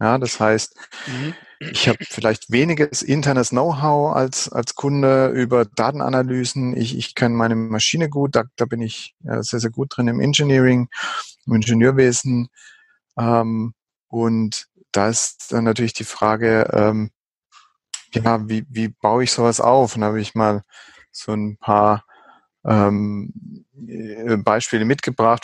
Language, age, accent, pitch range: German, 30-49, German, 110-125 Hz